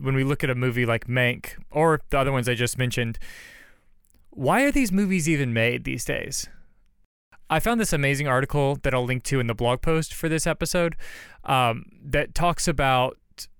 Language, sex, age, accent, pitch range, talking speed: English, male, 20-39, American, 125-155 Hz, 190 wpm